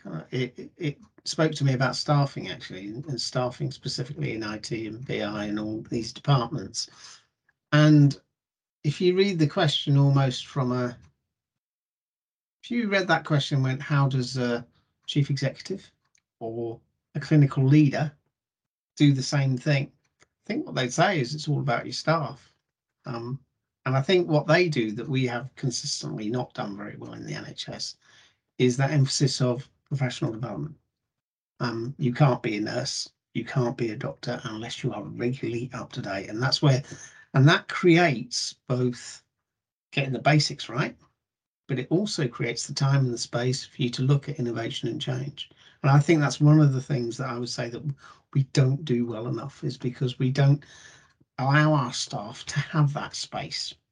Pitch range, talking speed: 125-150 Hz, 175 wpm